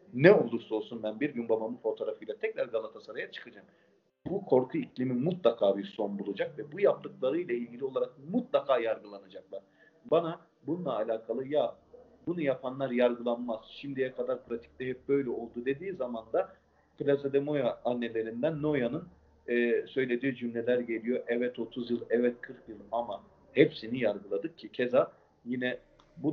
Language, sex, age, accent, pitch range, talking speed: Turkish, male, 40-59, native, 115-150 Hz, 145 wpm